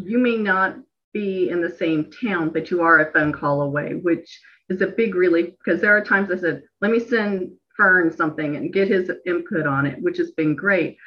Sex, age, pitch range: female, 40-59, 160-205 Hz